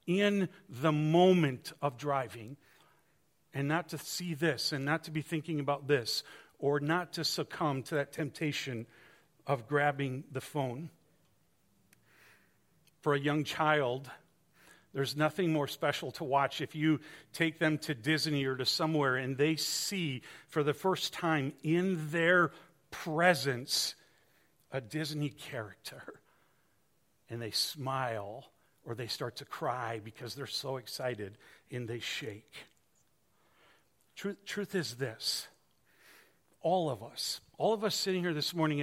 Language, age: English, 50-69